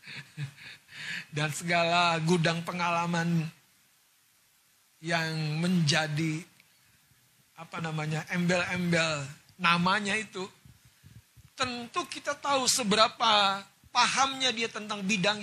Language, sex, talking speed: Indonesian, male, 75 wpm